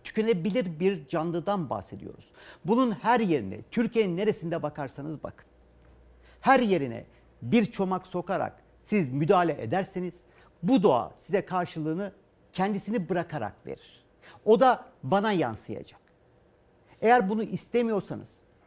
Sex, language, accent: male, Turkish, native